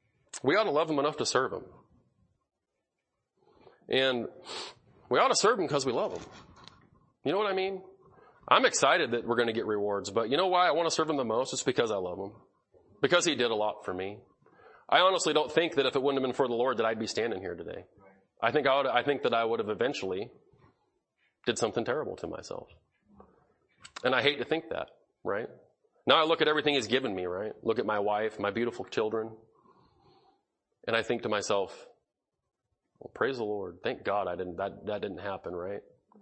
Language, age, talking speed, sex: English, 30-49, 210 wpm, male